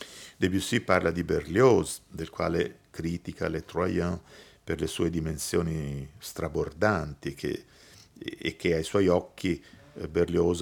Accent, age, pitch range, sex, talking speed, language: native, 50-69, 80-100 Hz, male, 120 wpm, Italian